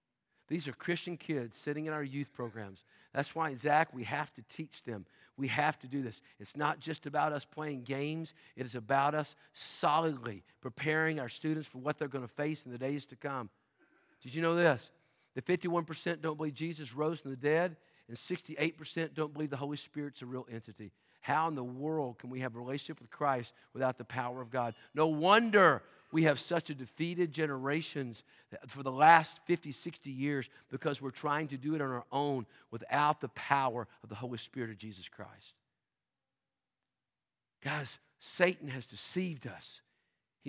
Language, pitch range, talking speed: English, 125-160 Hz, 185 wpm